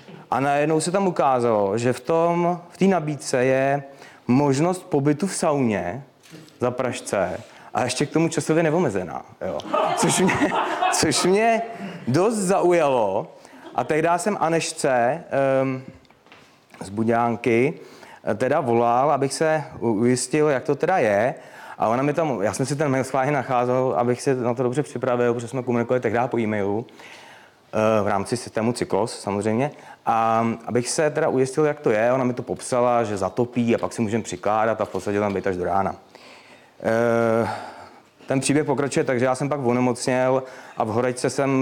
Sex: male